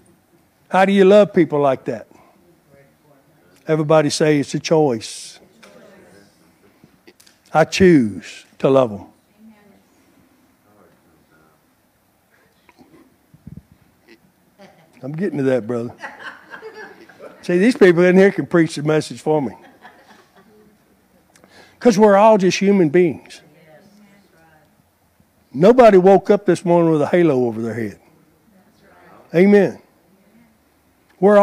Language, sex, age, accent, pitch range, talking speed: English, male, 60-79, American, 155-205 Hz, 100 wpm